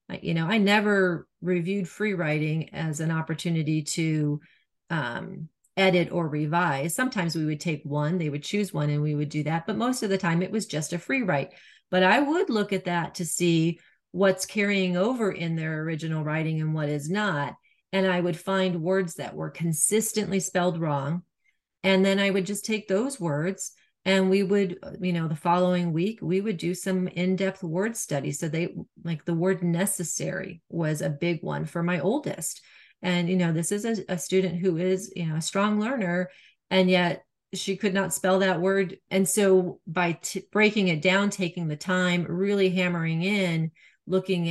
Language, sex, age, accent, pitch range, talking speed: English, female, 40-59, American, 160-190 Hz, 190 wpm